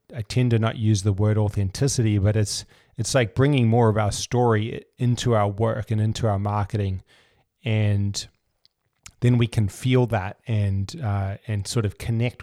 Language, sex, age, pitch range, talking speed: English, male, 30-49, 105-120 Hz, 175 wpm